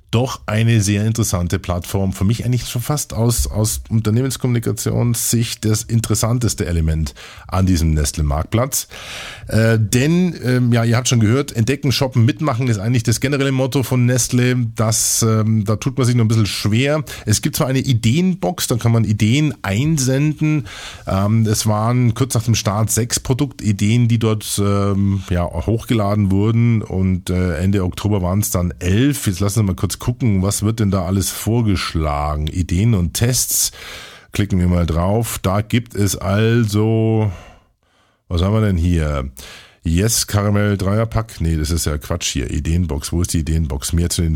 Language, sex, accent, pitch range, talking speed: German, male, German, 95-120 Hz, 170 wpm